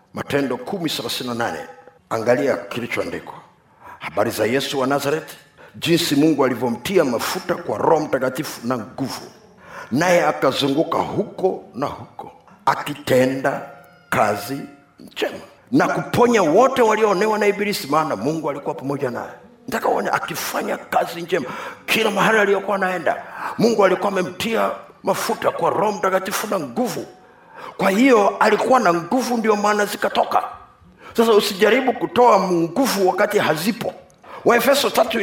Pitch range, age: 180-230 Hz, 50-69